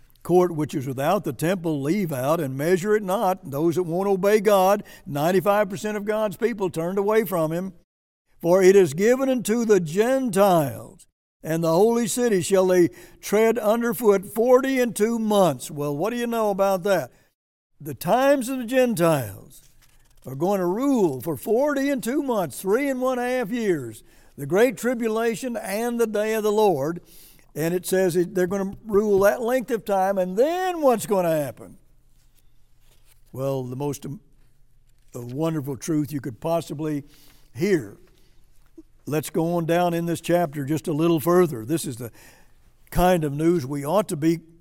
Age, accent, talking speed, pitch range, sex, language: 60-79, American, 170 wpm, 155-210 Hz, male, English